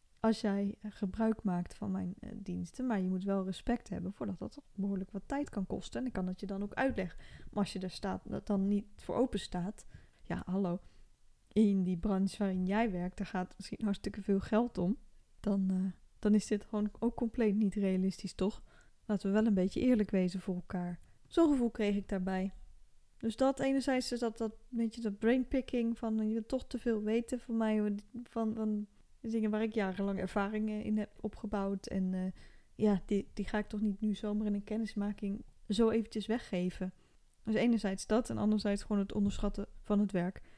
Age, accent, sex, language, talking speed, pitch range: 10-29, Dutch, female, Dutch, 205 wpm, 190-220 Hz